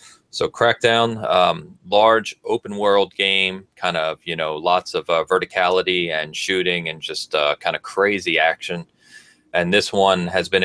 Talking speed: 165 wpm